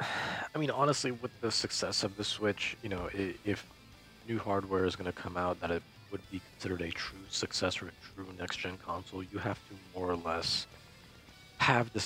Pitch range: 85-100 Hz